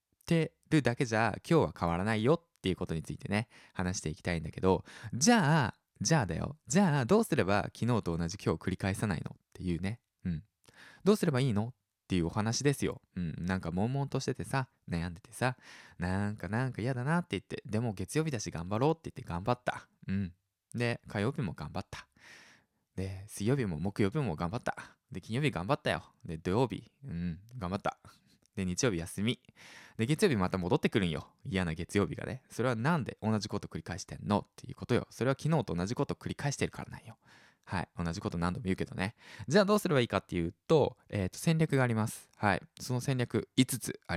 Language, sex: Japanese, male